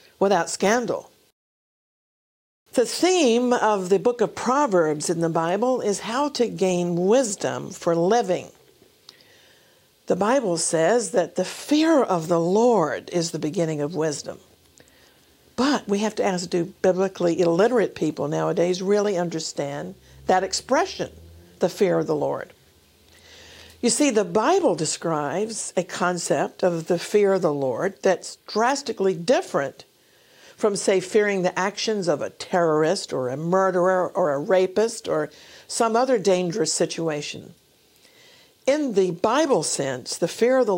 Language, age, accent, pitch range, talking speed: English, 50-69, American, 175-235 Hz, 140 wpm